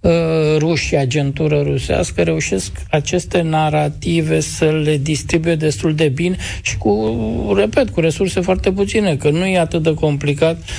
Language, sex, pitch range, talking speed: Romanian, male, 125-165 Hz, 140 wpm